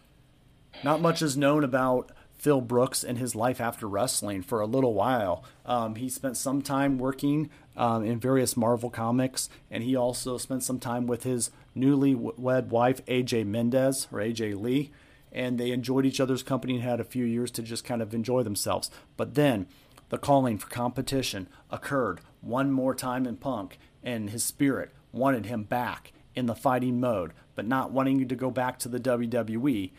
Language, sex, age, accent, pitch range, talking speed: English, male, 40-59, American, 120-135 Hz, 180 wpm